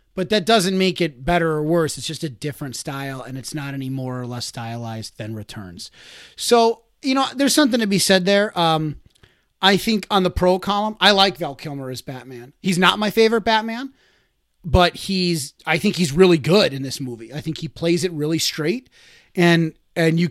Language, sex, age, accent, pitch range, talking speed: English, male, 30-49, American, 150-190 Hz, 205 wpm